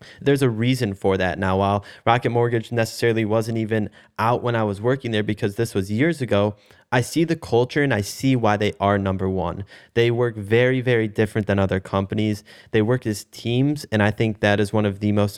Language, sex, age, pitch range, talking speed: English, male, 20-39, 100-115 Hz, 220 wpm